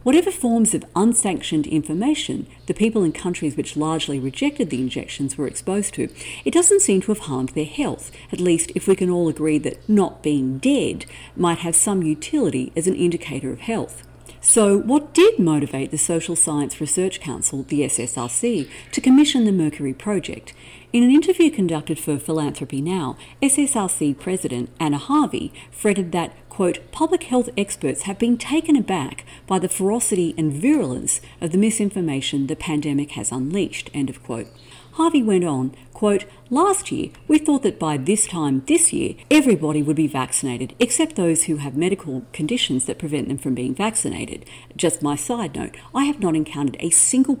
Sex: female